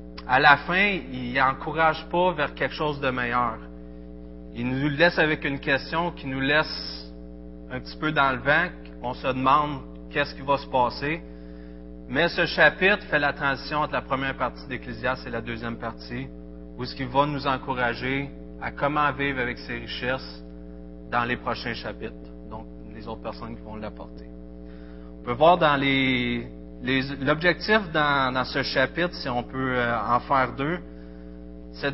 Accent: Canadian